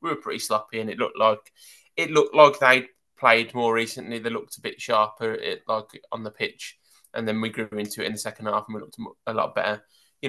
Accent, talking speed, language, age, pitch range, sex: British, 245 wpm, English, 20-39, 110-125 Hz, male